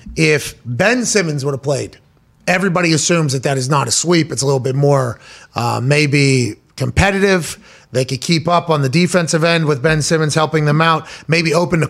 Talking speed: 195 wpm